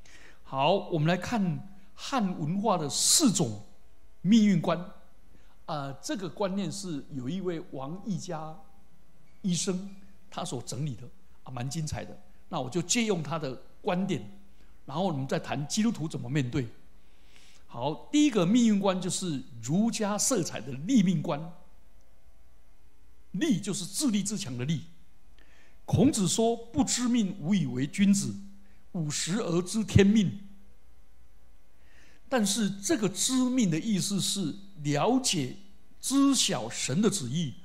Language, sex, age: Chinese, male, 60-79